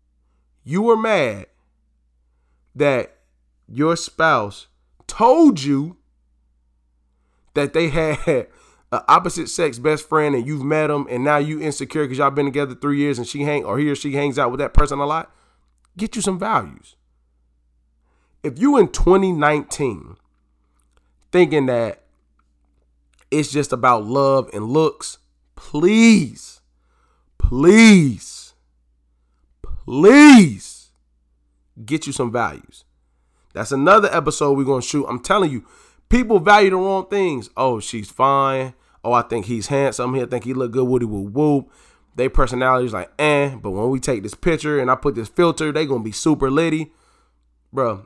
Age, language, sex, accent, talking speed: 20-39, English, male, American, 145 wpm